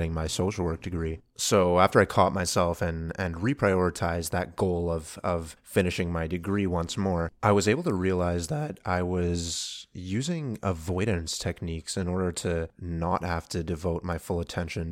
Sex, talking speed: male, 170 wpm